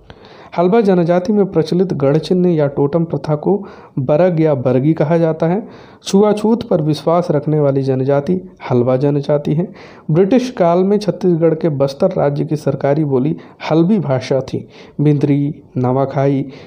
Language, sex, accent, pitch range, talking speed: Hindi, male, native, 135-175 Hz, 140 wpm